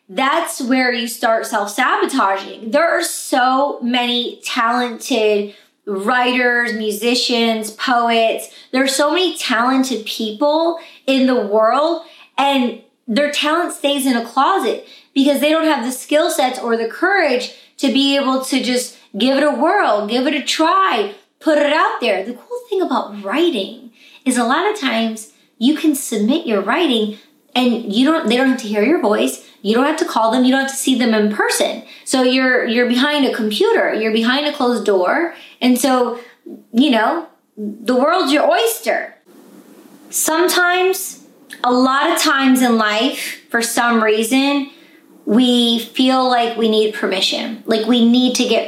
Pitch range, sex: 230-295 Hz, female